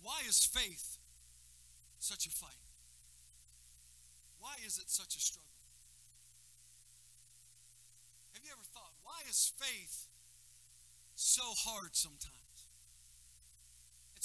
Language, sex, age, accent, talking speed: English, male, 50-69, American, 95 wpm